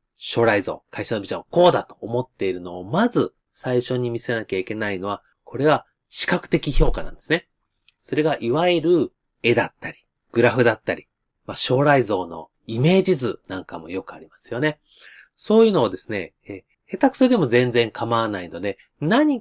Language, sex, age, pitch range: Japanese, male, 30-49, 115-175 Hz